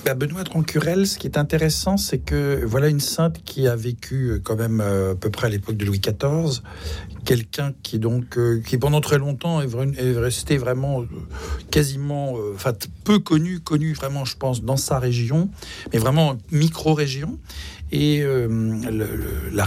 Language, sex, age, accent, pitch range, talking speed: French, male, 60-79, French, 115-155 Hz, 165 wpm